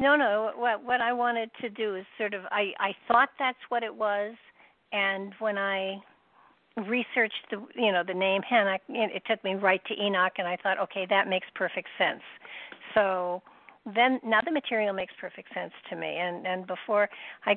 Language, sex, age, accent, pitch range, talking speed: English, female, 60-79, American, 185-215 Hz, 190 wpm